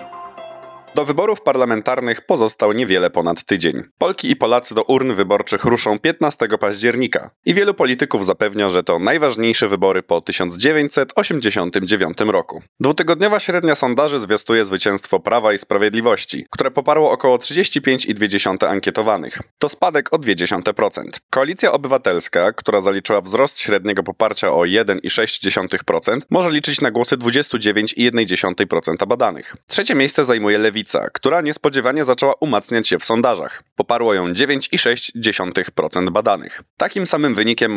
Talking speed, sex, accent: 120 wpm, male, native